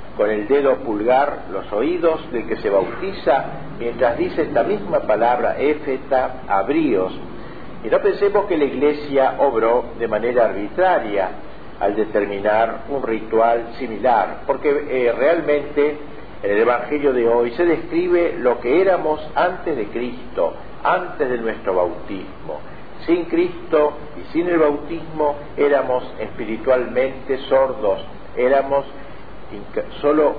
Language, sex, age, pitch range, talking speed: Spanish, male, 50-69, 120-150 Hz, 125 wpm